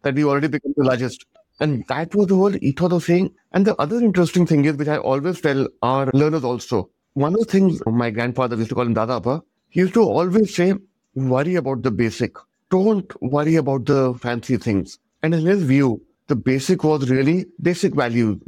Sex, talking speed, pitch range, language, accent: male, 205 wpm, 130-170 Hz, English, Indian